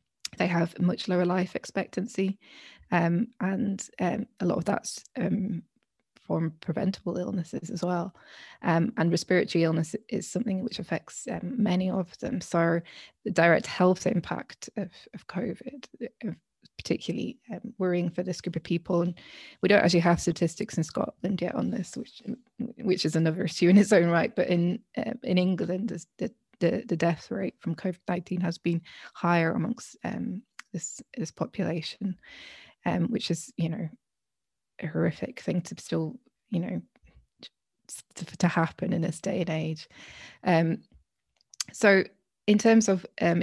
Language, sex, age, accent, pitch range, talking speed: English, female, 20-39, British, 170-205 Hz, 160 wpm